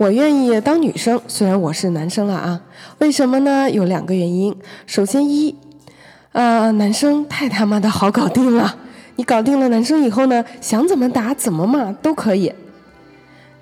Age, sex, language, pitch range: 20-39, female, Chinese, 195-275 Hz